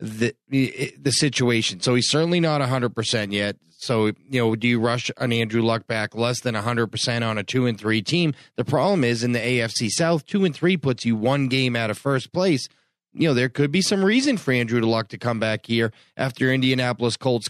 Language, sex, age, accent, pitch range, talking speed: English, male, 30-49, American, 120-150 Hz, 235 wpm